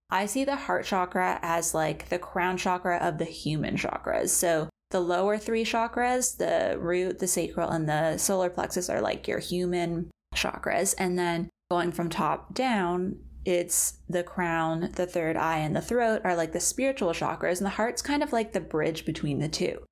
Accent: American